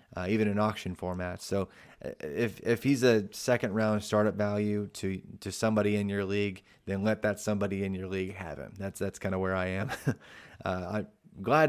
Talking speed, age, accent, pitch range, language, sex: 200 wpm, 20-39, American, 100-115 Hz, English, male